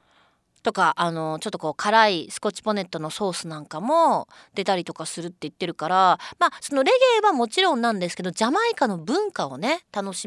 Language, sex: Japanese, female